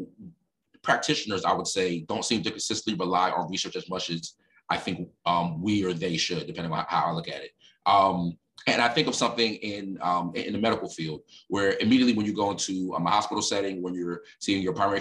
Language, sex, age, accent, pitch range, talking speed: English, male, 30-49, American, 90-110 Hz, 220 wpm